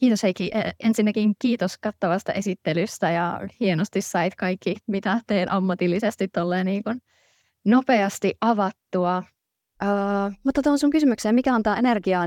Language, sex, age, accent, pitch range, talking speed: Finnish, female, 20-39, native, 165-205 Hz, 115 wpm